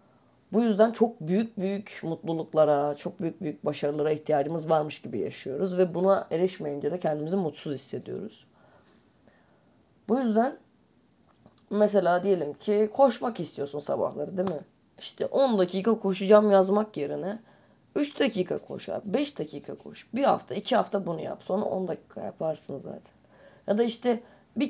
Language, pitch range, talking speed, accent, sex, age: Turkish, 165-210 Hz, 140 wpm, native, female, 30-49